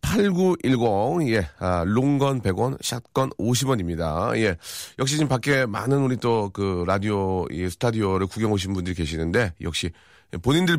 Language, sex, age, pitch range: Korean, male, 30-49, 95-140 Hz